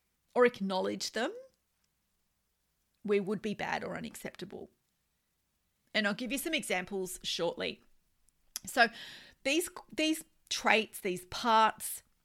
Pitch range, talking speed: 180-240 Hz, 110 wpm